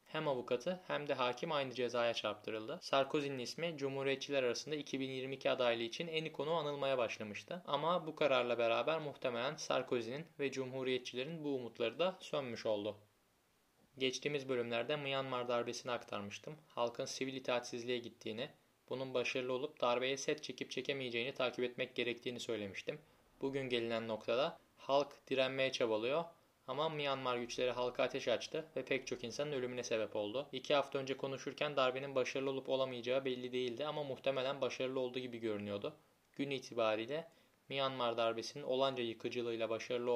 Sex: male